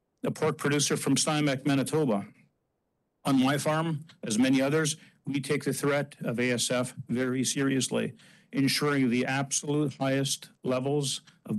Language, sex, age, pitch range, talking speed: English, male, 50-69, 130-160 Hz, 135 wpm